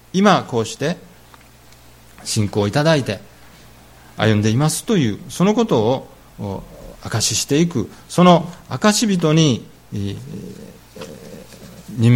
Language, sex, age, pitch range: Japanese, male, 40-59, 100-170 Hz